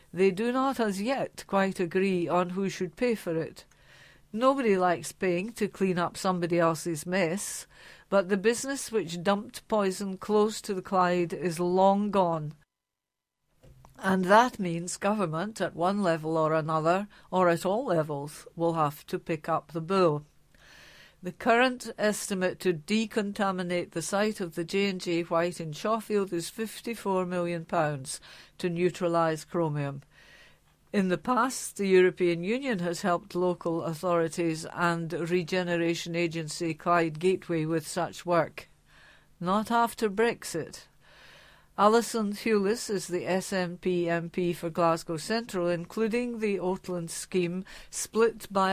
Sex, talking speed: female, 135 wpm